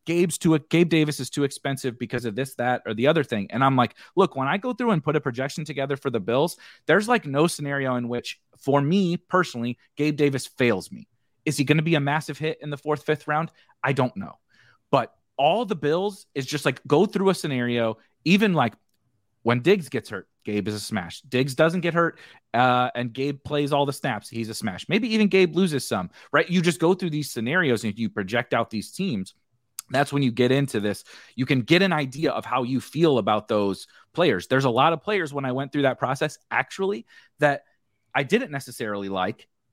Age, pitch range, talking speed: 30-49, 120-155 Hz, 225 wpm